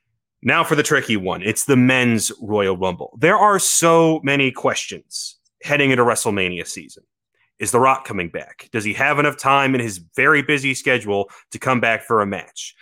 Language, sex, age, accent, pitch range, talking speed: English, male, 30-49, American, 115-150 Hz, 185 wpm